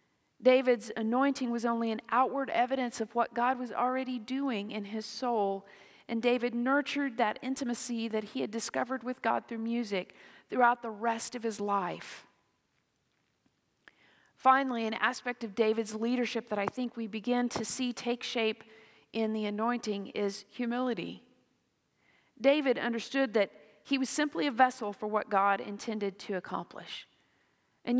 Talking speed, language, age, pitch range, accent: 150 wpm, English, 40-59, 215-250 Hz, American